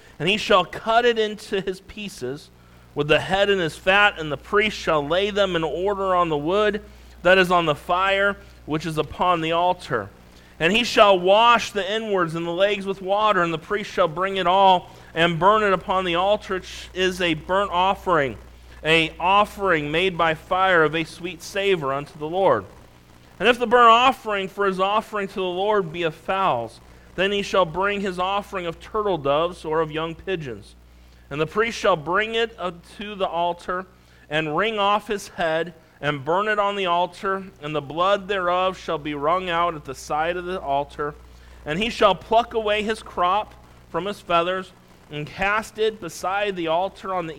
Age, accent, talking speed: 40-59, American, 200 wpm